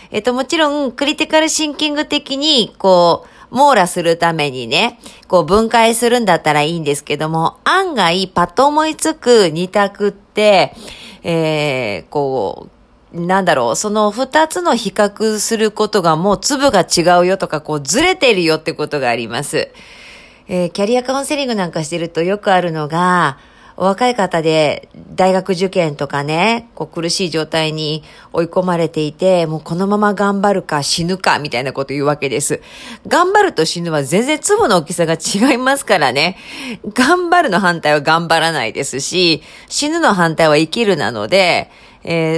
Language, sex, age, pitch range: Japanese, female, 40-59, 165-250 Hz